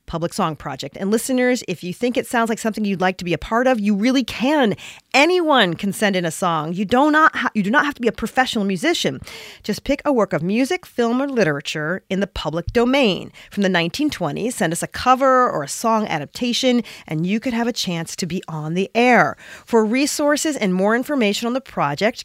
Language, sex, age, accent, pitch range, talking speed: English, female, 40-59, American, 185-250 Hz, 225 wpm